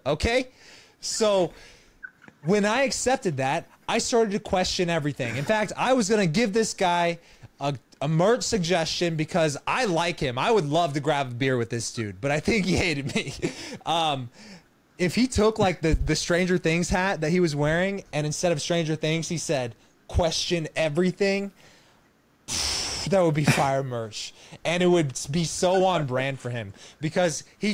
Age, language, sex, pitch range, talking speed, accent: 20-39, English, male, 155-205 Hz, 180 wpm, American